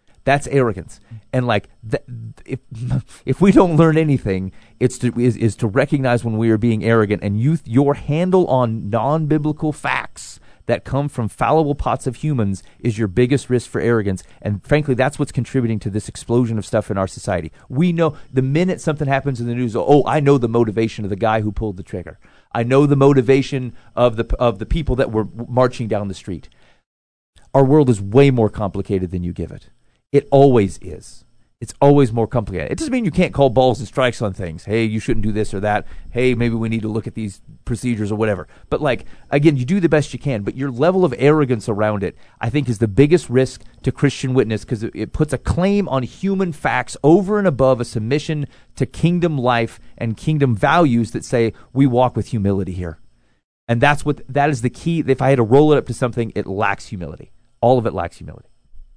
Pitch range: 110-140 Hz